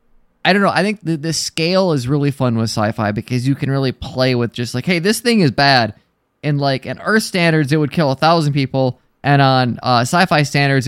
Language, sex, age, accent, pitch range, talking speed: English, male, 20-39, American, 125-160 Hz, 230 wpm